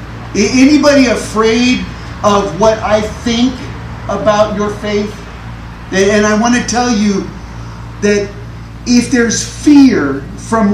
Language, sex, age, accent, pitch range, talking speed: English, male, 40-59, American, 165-245 Hz, 110 wpm